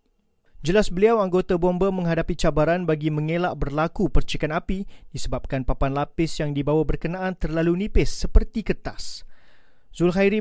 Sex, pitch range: male, 150-190 Hz